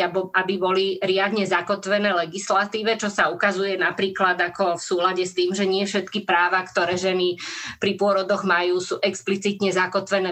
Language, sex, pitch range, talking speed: Slovak, female, 185-225 Hz, 150 wpm